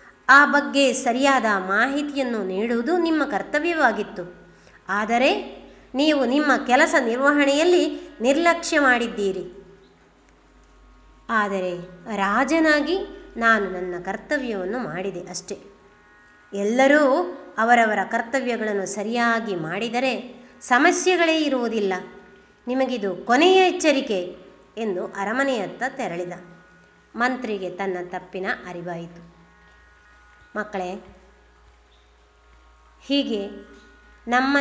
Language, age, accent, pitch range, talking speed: Kannada, 20-39, native, 195-275 Hz, 70 wpm